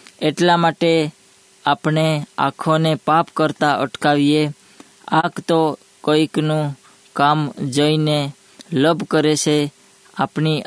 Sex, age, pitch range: female, 20-39, 145-165 Hz